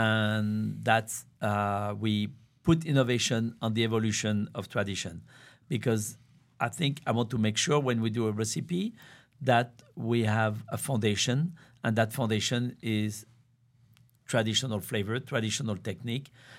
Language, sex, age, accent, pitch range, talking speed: English, male, 50-69, French, 110-130 Hz, 130 wpm